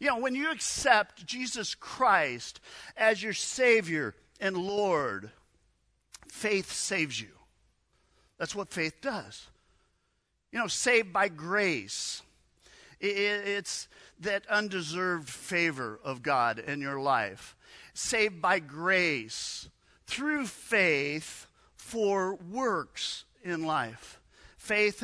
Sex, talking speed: male, 105 wpm